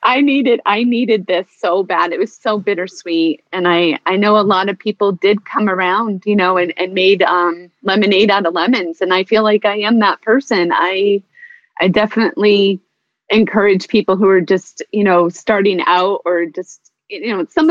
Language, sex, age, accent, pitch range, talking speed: English, female, 30-49, American, 180-255 Hz, 195 wpm